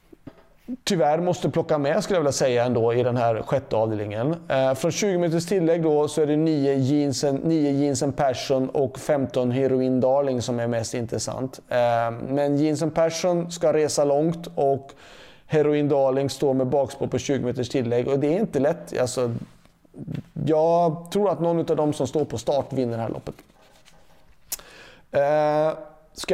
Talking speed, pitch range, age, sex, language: 170 wpm, 130-160 Hz, 30-49, male, Swedish